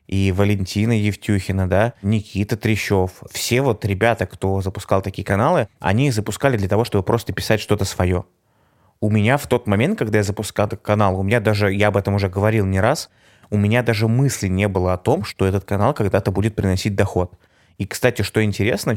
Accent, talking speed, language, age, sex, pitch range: native, 195 wpm, Russian, 20-39, male, 95-110 Hz